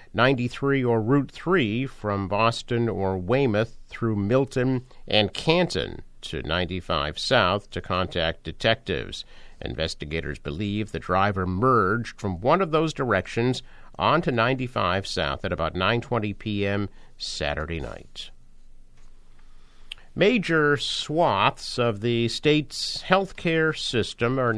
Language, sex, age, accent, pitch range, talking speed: English, male, 50-69, American, 100-130 Hz, 115 wpm